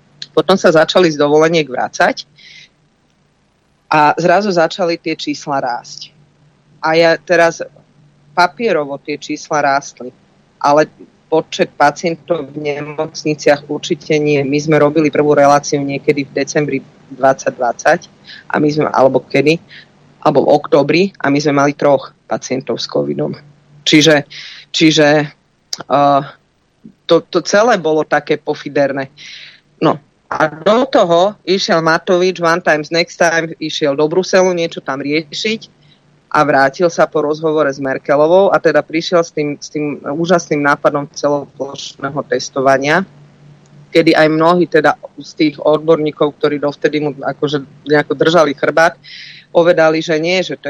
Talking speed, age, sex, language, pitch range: 135 wpm, 30-49, female, Slovak, 145-165 Hz